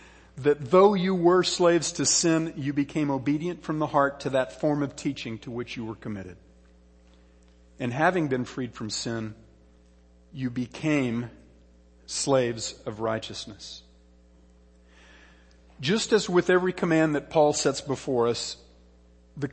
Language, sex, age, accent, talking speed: English, male, 50-69, American, 140 wpm